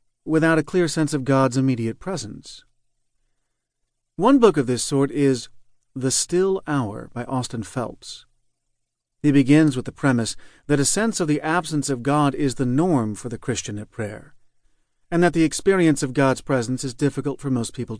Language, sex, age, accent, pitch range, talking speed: English, male, 40-59, American, 120-155 Hz, 175 wpm